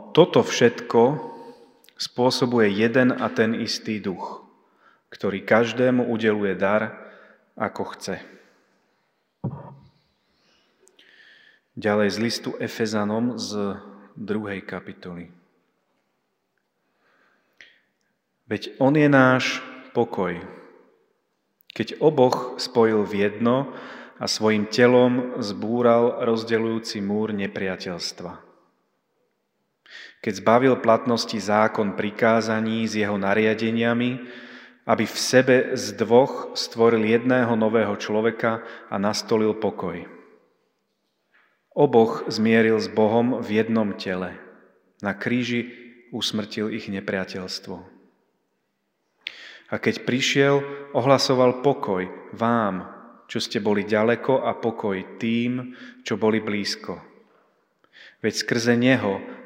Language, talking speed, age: Slovak, 90 wpm, 30-49